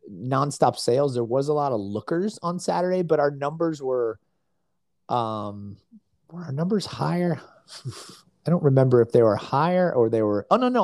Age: 30-49